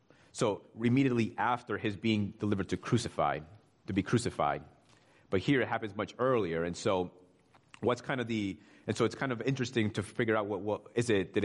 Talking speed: 195 wpm